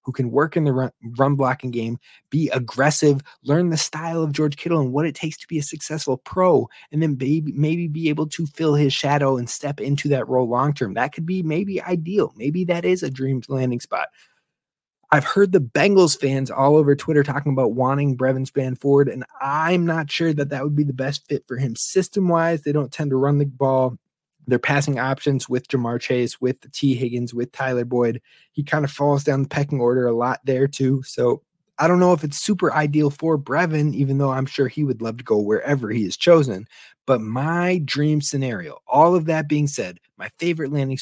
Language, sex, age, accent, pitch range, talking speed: English, male, 20-39, American, 130-160 Hz, 215 wpm